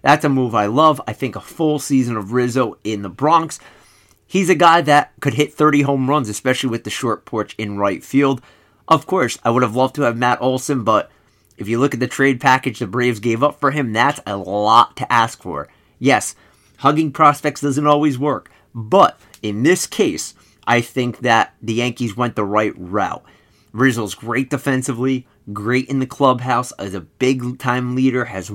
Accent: American